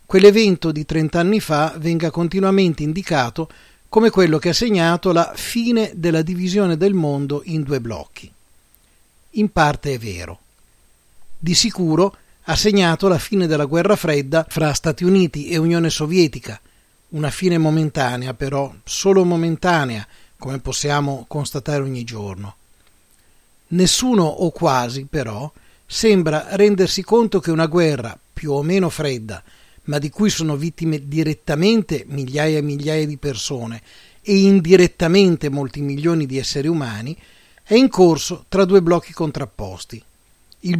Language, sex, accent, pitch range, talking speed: Italian, male, native, 140-180 Hz, 135 wpm